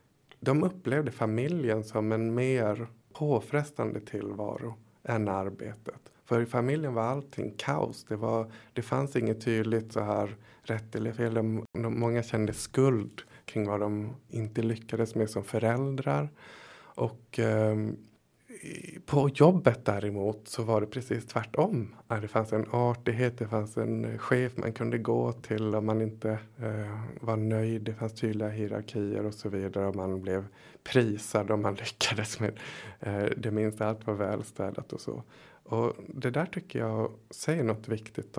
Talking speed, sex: 150 wpm, male